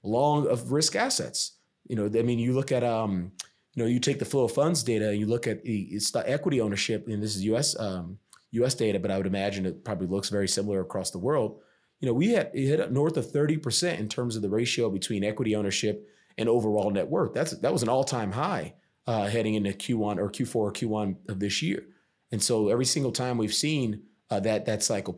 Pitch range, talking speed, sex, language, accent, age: 100-120 Hz, 235 wpm, male, English, American, 30-49